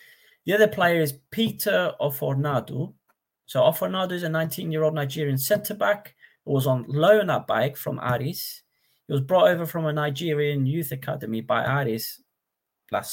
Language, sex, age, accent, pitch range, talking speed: English, male, 30-49, British, 130-160 Hz, 150 wpm